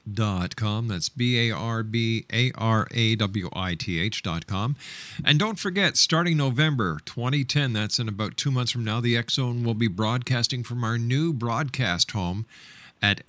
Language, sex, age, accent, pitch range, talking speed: English, male, 50-69, American, 105-125 Hz, 125 wpm